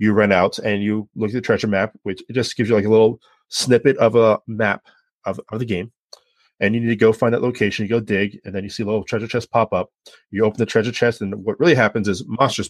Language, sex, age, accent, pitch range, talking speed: English, male, 30-49, American, 100-115 Hz, 270 wpm